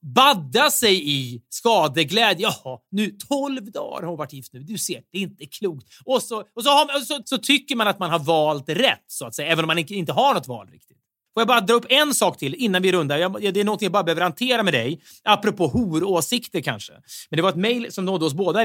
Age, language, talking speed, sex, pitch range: 30-49, Swedish, 250 wpm, male, 150-220 Hz